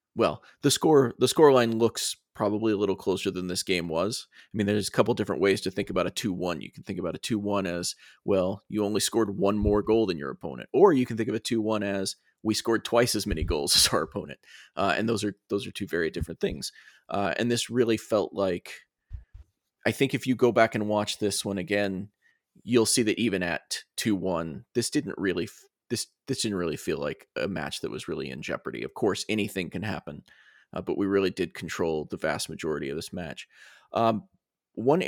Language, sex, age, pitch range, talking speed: English, male, 30-49, 100-115 Hz, 220 wpm